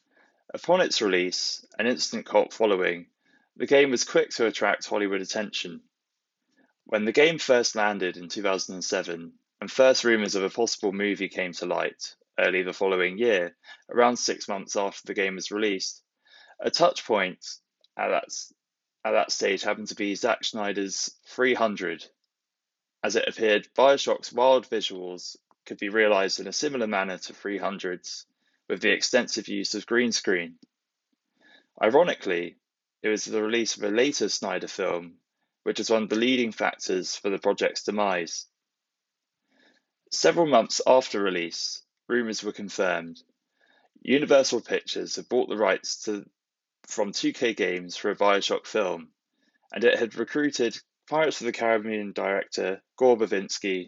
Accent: British